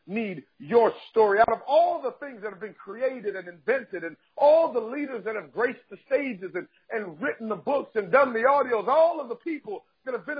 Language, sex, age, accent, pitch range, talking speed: English, male, 50-69, American, 205-275 Hz, 225 wpm